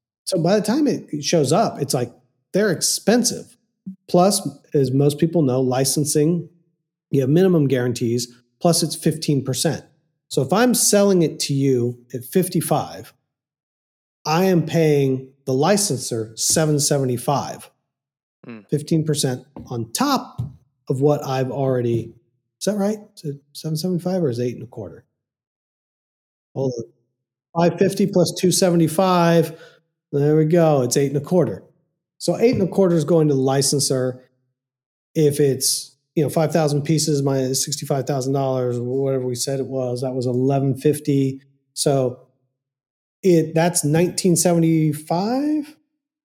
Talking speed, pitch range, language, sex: 130 wpm, 130-170 Hz, English, male